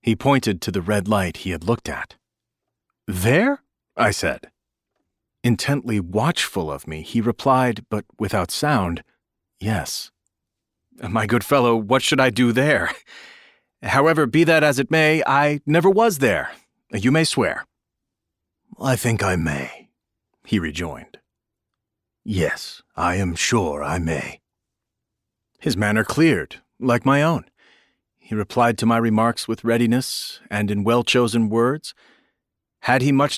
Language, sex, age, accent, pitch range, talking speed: English, male, 40-59, American, 110-145 Hz, 135 wpm